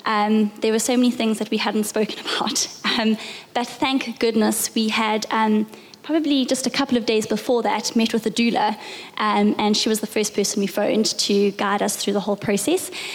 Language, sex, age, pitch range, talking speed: English, female, 20-39, 215-245 Hz, 210 wpm